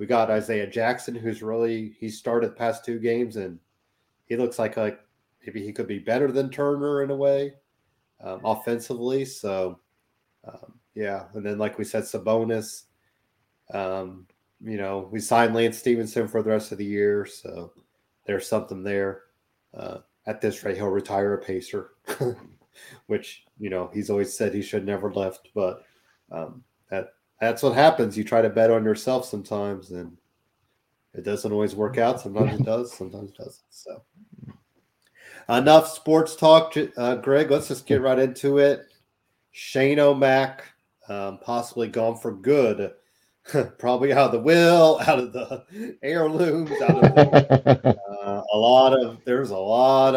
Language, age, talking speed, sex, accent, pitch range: English, 30-49, 160 wpm, male, American, 105-130 Hz